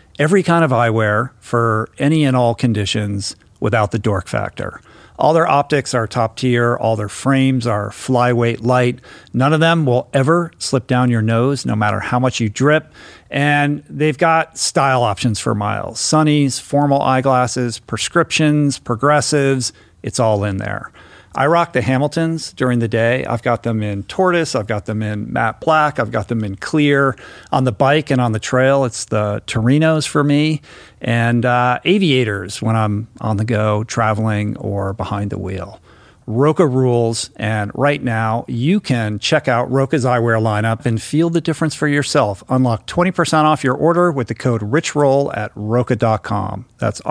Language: English